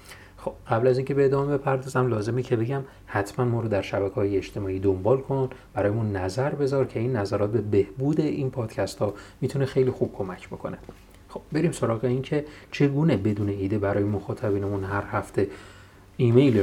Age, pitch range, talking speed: 30-49, 100-130 Hz, 175 wpm